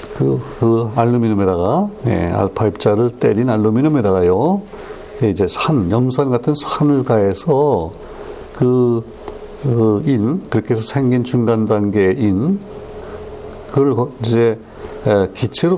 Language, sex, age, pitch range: Korean, male, 60-79, 105-145 Hz